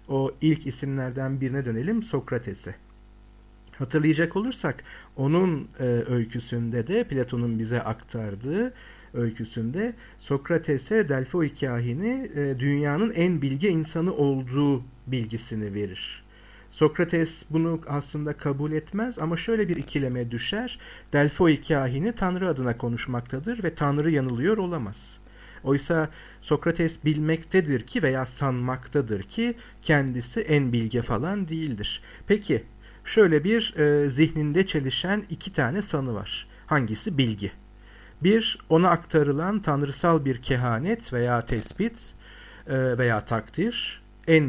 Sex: male